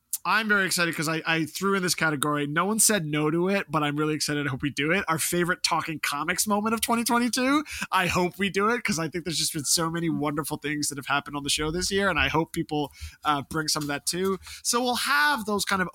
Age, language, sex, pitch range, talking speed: 20-39, English, male, 150-195 Hz, 265 wpm